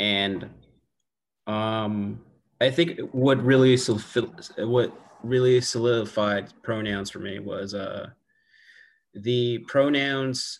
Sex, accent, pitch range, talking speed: male, American, 100-120 Hz, 80 wpm